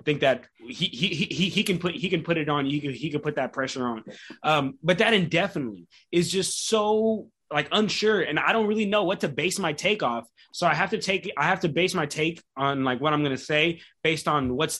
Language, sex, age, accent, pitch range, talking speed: English, male, 20-39, American, 135-175 Hz, 250 wpm